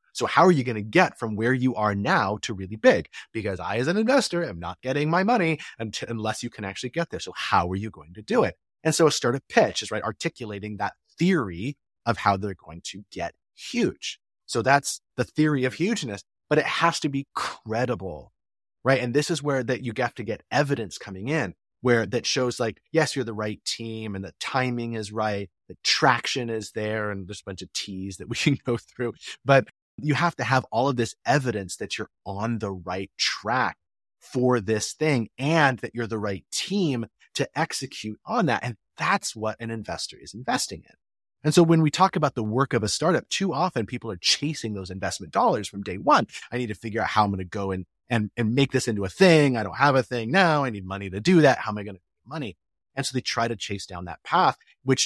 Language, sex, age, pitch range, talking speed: English, male, 30-49, 100-140 Hz, 235 wpm